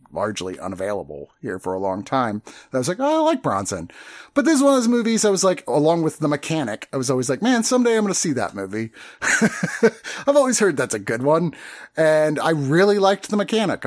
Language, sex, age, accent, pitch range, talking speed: English, male, 30-49, American, 130-185 Hz, 240 wpm